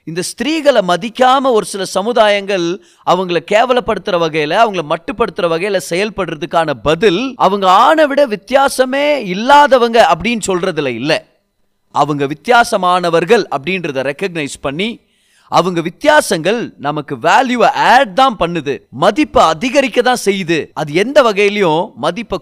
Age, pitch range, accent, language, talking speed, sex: 30-49, 150-230 Hz, native, Tamil, 110 wpm, male